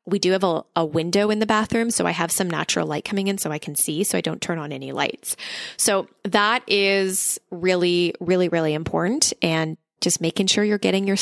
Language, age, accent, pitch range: English, 20-39, American, 175-220 Hz